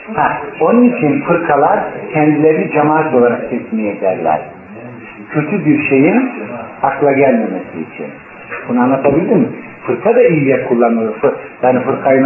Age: 50-69